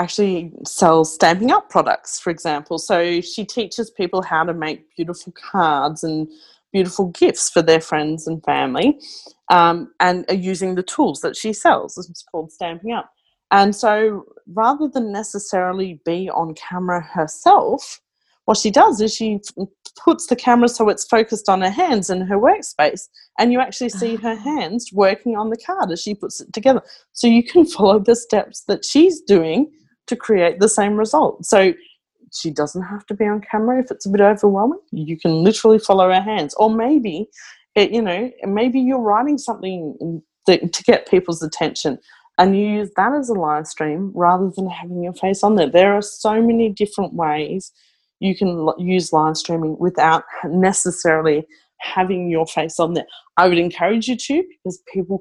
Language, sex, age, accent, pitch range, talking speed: English, female, 30-49, Australian, 175-230 Hz, 180 wpm